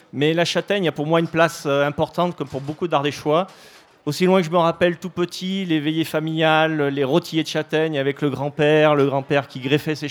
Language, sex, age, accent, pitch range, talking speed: French, male, 30-49, French, 130-160 Hz, 215 wpm